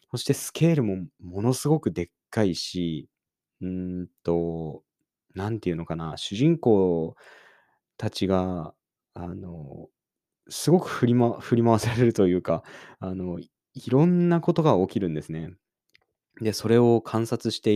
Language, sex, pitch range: Japanese, male, 90-120 Hz